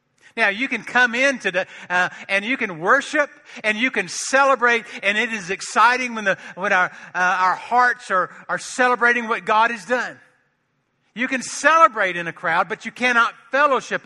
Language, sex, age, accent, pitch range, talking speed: English, male, 50-69, American, 160-220 Hz, 180 wpm